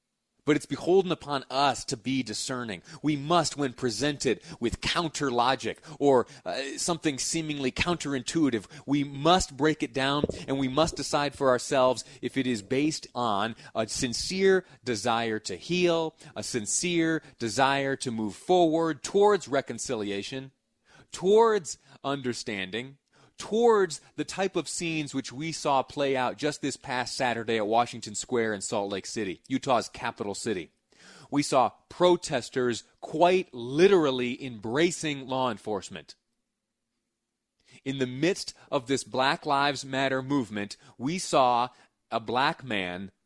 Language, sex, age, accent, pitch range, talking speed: English, male, 30-49, American, 125-155 Hz, 135 wpm